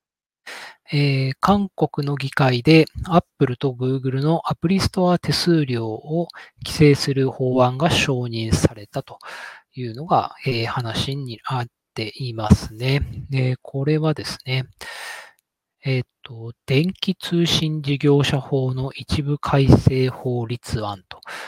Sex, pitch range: male, 125-155 Hz